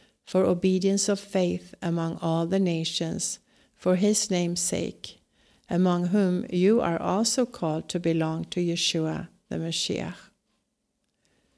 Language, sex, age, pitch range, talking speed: English, female, 60-79, 170-200 Hz, 125 wpm